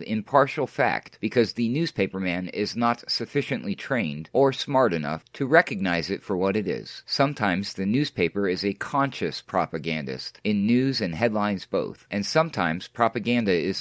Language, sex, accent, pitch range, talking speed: English, male, American, 95-120 Hz, 155 wpm